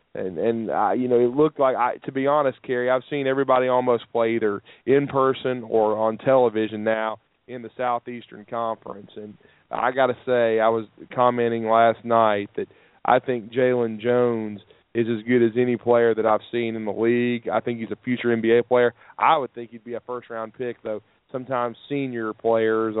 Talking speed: 195 wpm